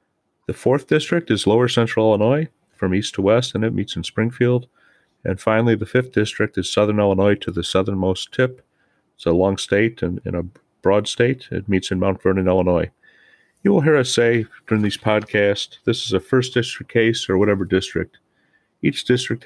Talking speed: 190 wpm